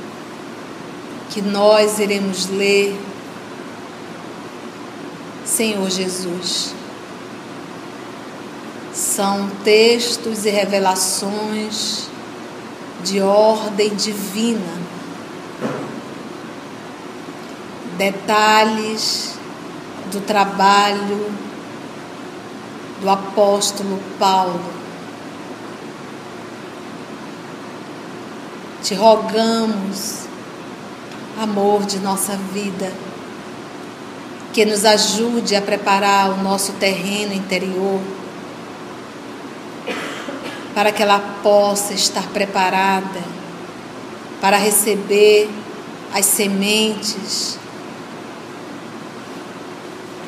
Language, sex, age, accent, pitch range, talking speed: Portuguese, female, 40-59, Brazilian, 195-215 Hz, 55 wpm